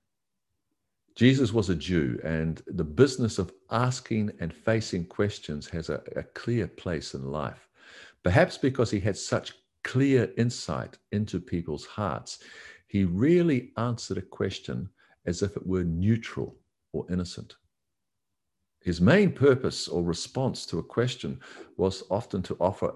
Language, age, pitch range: English, 50-69, 85-115 Hz